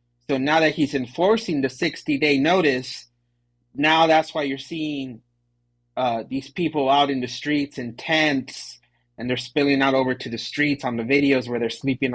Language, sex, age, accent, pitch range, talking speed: English, male, 30-49, American, 120-155 Hz, 180 wpm